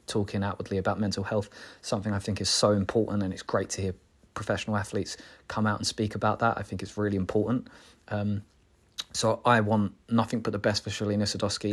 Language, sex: English, male